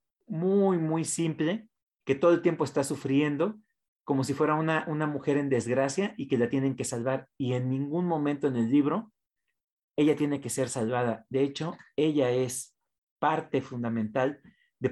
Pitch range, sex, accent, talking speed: 125-155 Hz, male, Mexican, 170 wpm